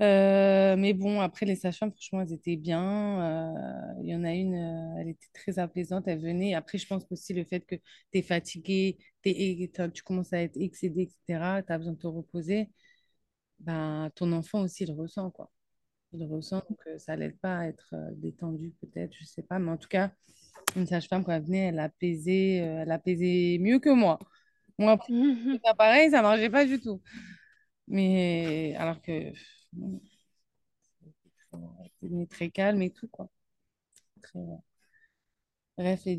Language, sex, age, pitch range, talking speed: French, female, 30-49, 165-195 Hz, 165 wpm